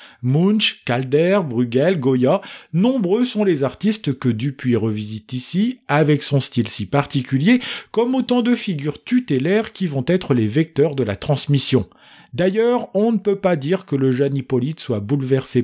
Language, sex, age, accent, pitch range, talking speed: French, male, 40-59, French, 125-195 Hz, 160 wpm